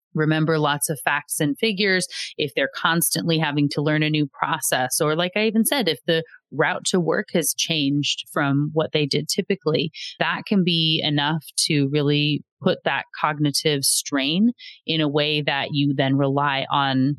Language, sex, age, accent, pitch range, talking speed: English, female, 30-49, American, 145-180 Hz, 175 wpm